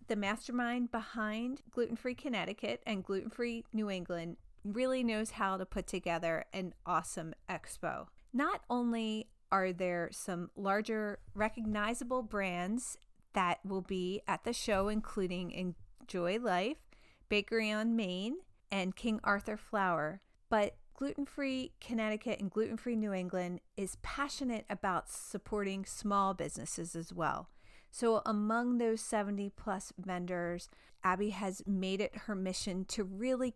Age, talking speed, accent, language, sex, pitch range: 40-59, 125 wpm, American, English, female, 185-230 Hz